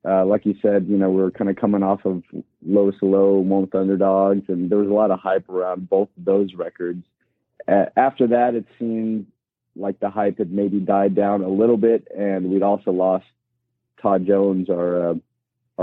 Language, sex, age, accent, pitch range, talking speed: English, male, 30-49, American, 95-105 Hz, 200 wpm